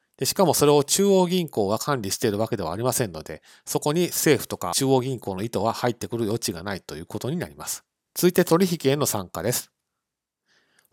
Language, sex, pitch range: Japanese, male, 110-150 Hz